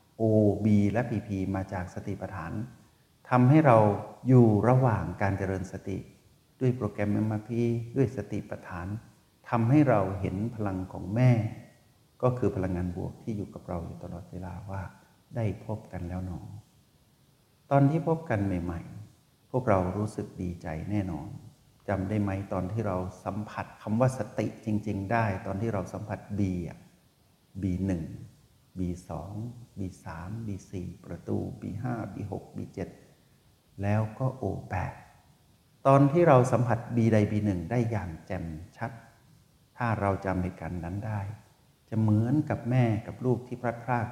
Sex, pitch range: male, 95-120 Hz